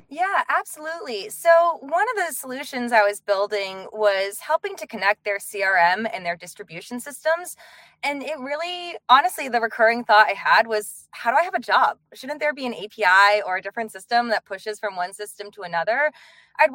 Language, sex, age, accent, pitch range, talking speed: English, female, 20-39, American, 200-275 Hz, 190 wpm